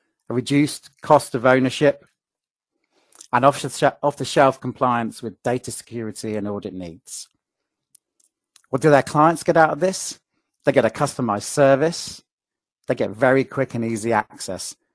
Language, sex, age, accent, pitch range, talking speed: English, male, 40-59, British, 110-140 Hz, 135 wpm